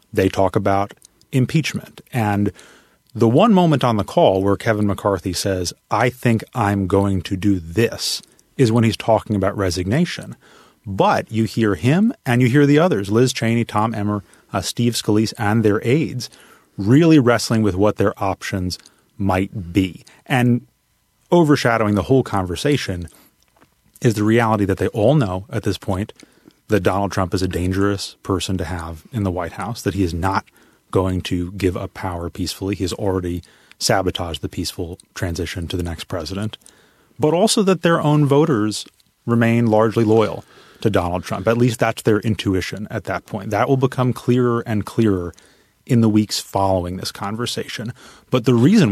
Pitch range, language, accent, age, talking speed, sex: 95-115 Hz, English, American, 30-49, 170 wpm, male